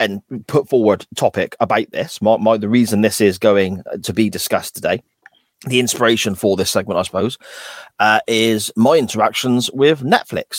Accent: British